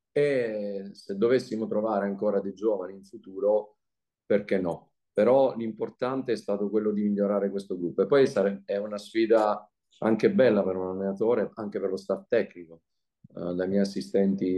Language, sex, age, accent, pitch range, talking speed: Italian, male, 40-59, native, 95-110 Hz, 160 wpm